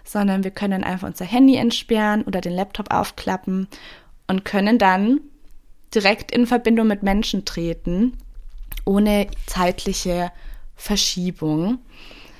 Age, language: 20-39, German